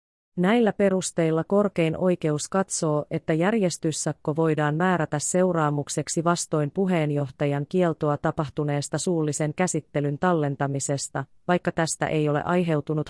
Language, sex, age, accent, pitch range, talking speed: Finnish, female, 30-49, native, 150-185 Hz, 100 wpm